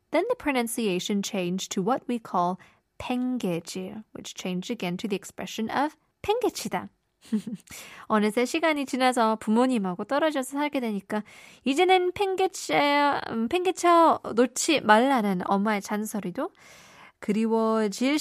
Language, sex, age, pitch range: Korean, female, 20-39, 205-295 Hz